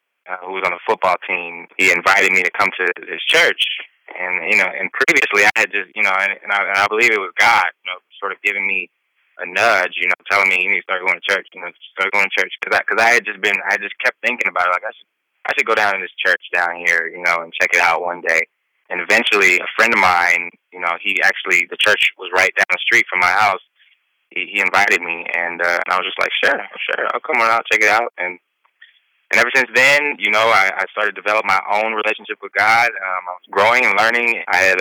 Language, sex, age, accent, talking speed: English, male, 20-39, American, 270 wpm